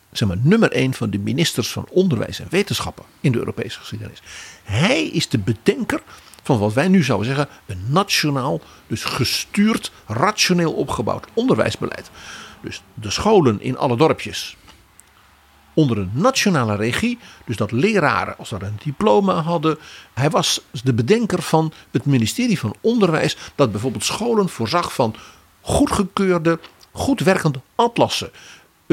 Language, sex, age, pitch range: Dutch, male, 50-69, 110-180 Hz